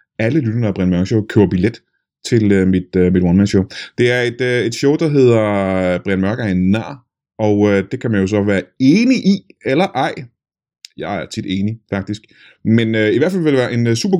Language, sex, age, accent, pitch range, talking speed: Danish, male, 30-49, native, 100-140 Hz, 210 wpm